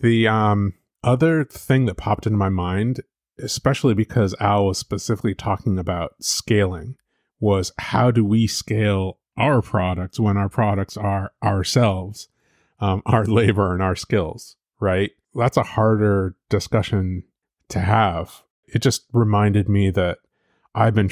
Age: 30-49